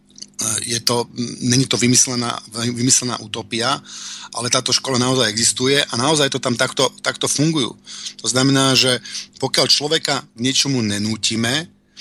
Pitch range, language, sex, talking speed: 120-145 Hz, Slovak, male, 140 wpm